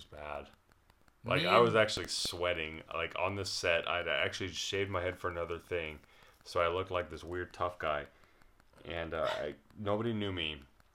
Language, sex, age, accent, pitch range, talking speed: English, male, 30-49, American, 85-100 Hz, 175 wpm